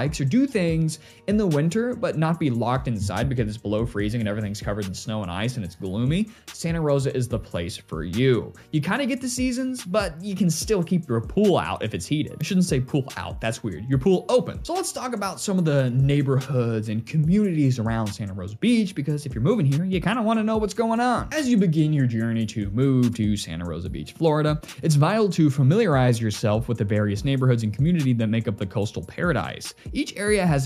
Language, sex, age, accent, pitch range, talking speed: English, male, 20-39, American, 110-165 Hz, 235 wpm